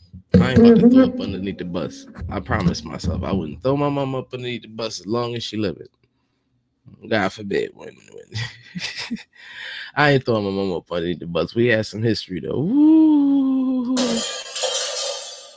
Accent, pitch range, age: American, 100-130 Hz, 20-39